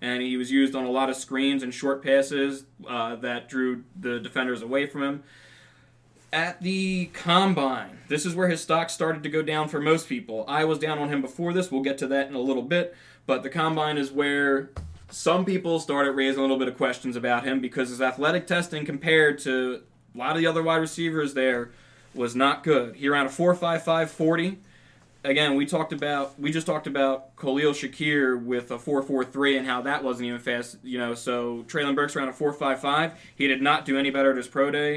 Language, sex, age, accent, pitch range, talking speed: English, male, 20-39, American, 130-155 Hz, 220 wpm